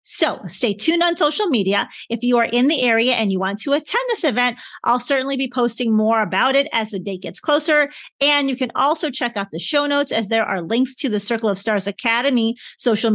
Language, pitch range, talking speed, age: English, 220-280 Hz, 235 wpm, 40-59